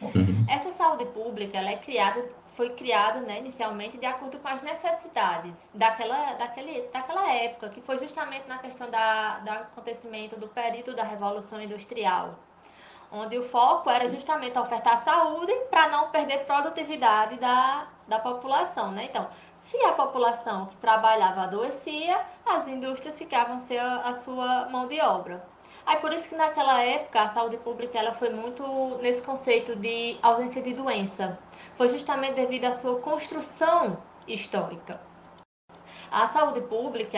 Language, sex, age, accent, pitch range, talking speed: Portuguese, female, 20-39, Brazilian, 225-280 Hz, 150 wpm